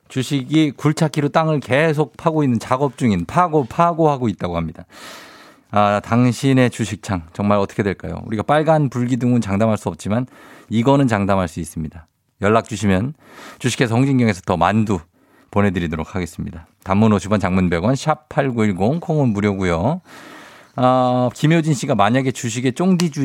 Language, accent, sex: Korean, native, male